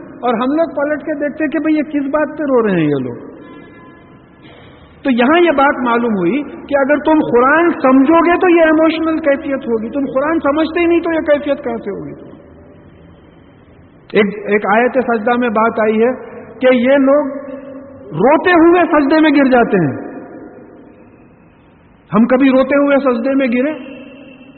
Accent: Indian